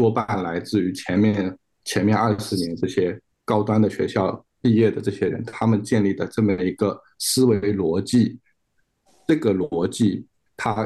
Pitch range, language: 100-130 Hz, Chinese